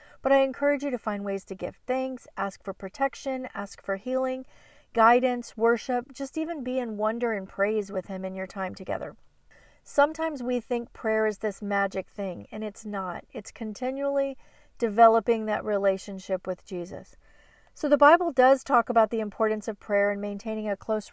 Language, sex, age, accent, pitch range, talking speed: English, female, 40-59, American, 205-255 Hz, 180 wpm